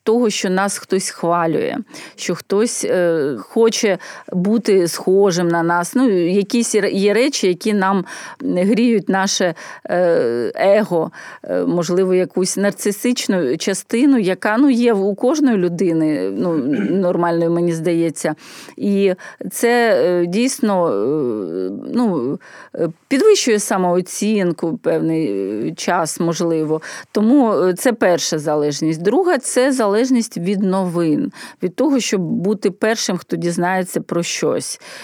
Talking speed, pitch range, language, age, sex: 120 wpm, 180-235 Hz, Ukrainian, 30-49, female